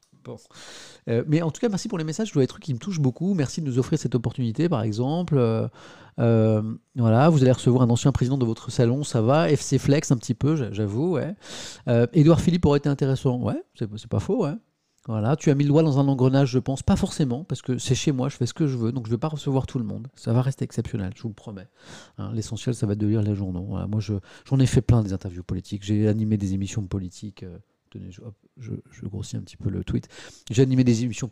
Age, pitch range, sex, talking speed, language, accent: 40-59, 110-140 Hz, male, 260 wpm, French, French